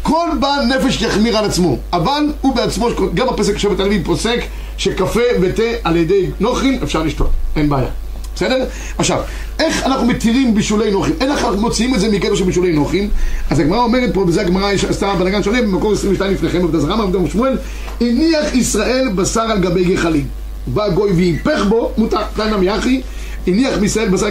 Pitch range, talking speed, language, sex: 185-245 Hz, 175 wpm, Hebrew, male